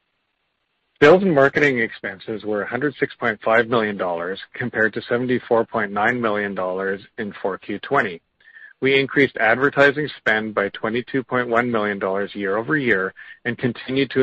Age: 40-59